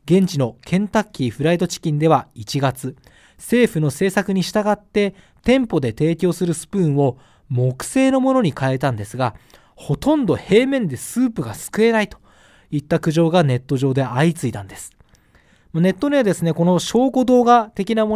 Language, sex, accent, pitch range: Japanese, male, native, 130-200 Hz